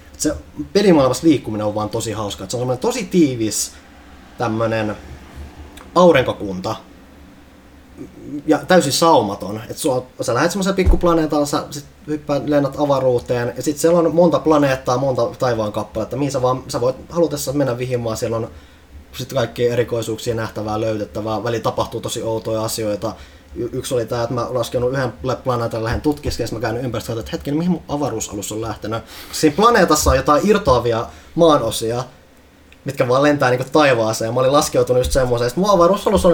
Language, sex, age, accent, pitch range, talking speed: Finnish, male, 20-39, native, 110-145 Hz, 160 wpm